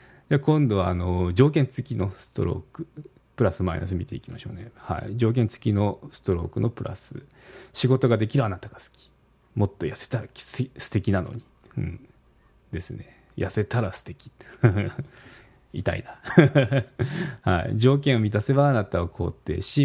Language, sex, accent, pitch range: Japanese, male, native, 95-130 Hz